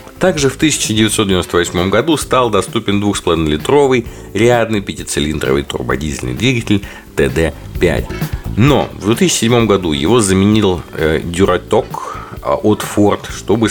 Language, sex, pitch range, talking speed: Russian, male, 75-115 Hz, 95 wpm